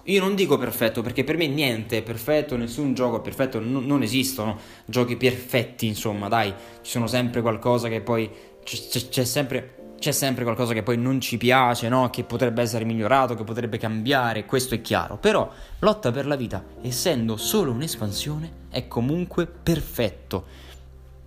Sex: male